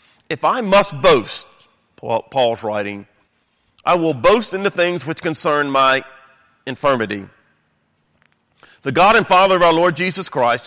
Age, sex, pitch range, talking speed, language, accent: 40-59, male, 115-155 Hz, 140 wpm, English, American